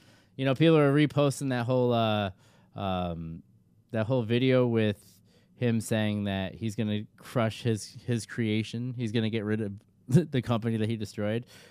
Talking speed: 175 wpm